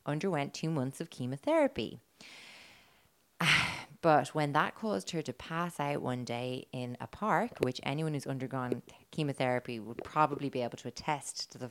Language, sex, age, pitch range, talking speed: English, female, 30-49, 125-160 Hz, 165 wpm